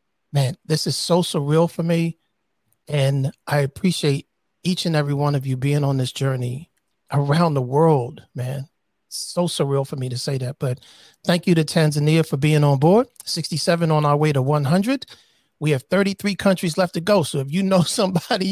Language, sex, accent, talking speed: English, male, American, 190 wpm